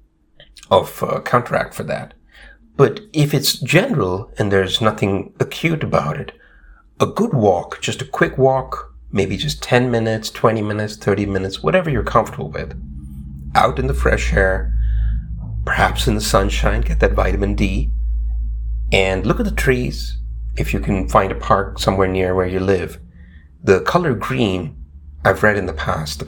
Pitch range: 80-110 Hz